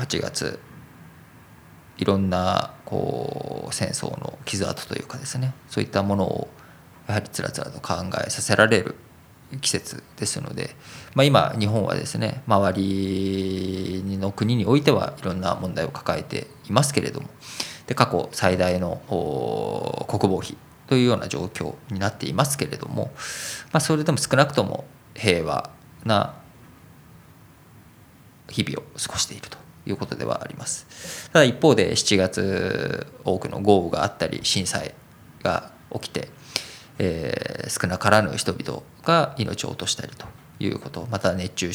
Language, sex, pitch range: Japanese, male, 95-135 Hz